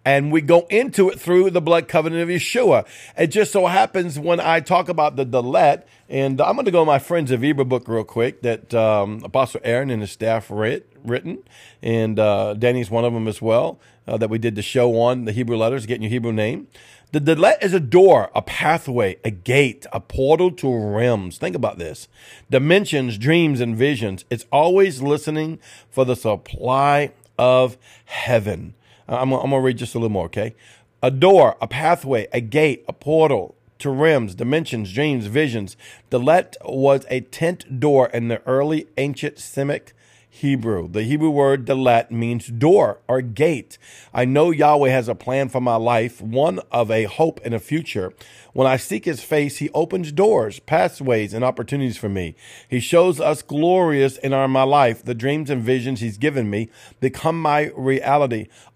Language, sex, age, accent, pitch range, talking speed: English, male, 40-59, American, 115-150 Hz, 185 wpm